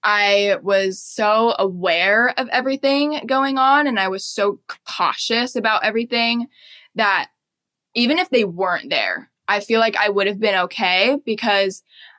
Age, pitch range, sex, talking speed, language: 10-29, 185-225 Hz, female, 150 wpm, English